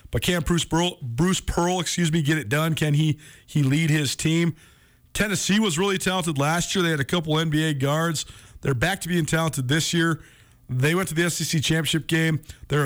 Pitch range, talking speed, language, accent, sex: 130-170 Hz, 205 wpm, English, American, male